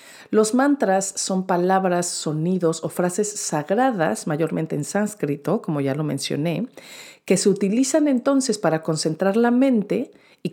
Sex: female